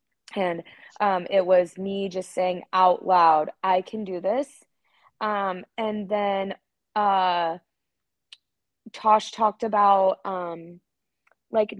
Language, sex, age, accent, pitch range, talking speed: English, female, 20-39, American, 180-215 Hz, 110 wpm